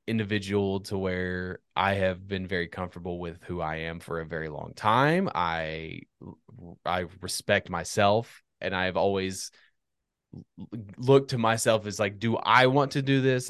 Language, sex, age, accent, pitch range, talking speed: English, male, 20-39, American, 95-125 Hz, 155 wpm